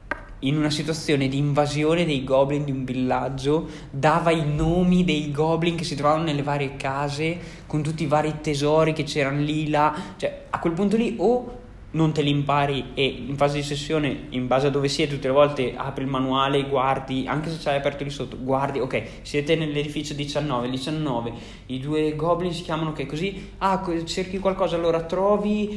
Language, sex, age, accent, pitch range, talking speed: Italian, male, 20-39, native, 130-155 Hz, 190 wpm